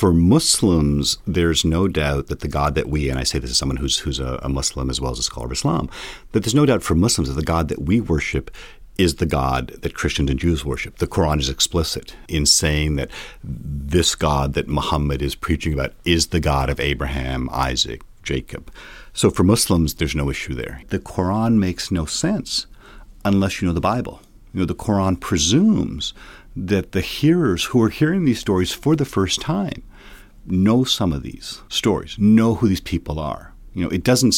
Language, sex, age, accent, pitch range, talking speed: English, male, 50-69, American, 75-105 Hz, 205 wpm